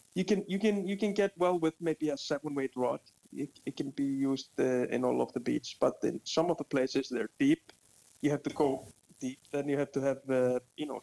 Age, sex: 20-39, male